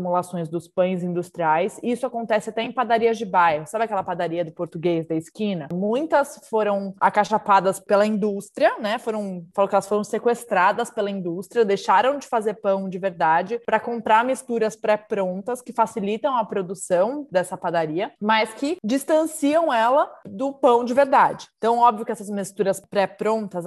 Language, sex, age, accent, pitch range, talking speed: Portuguese, female, 20-39, Brazilian, 190-230 Hz, 160 wpm